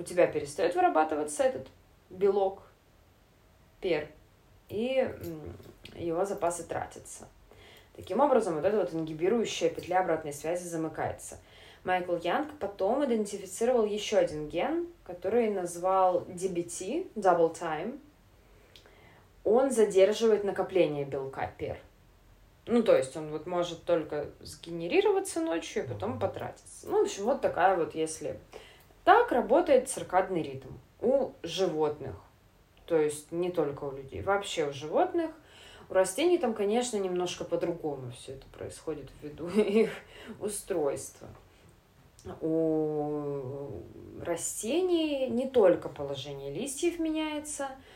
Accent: native